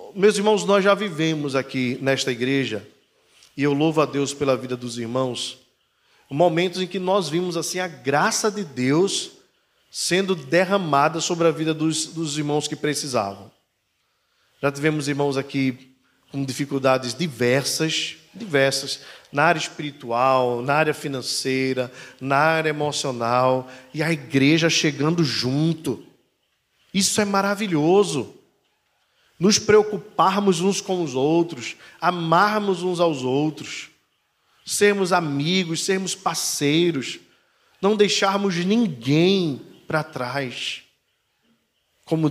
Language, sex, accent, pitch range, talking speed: Portuguese, male, Brazilian, 130-170 Hz, 115 wpm